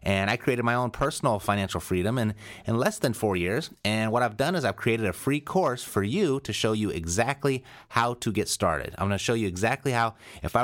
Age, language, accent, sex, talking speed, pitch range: 30-49, English, American, male, 245 wpm, 95-125 Hz